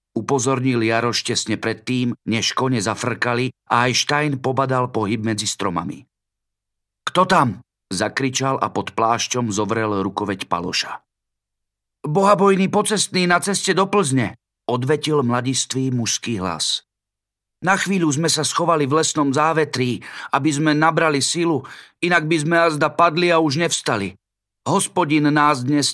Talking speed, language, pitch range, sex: 125 wpm, Slovak, 105-145 Hz, male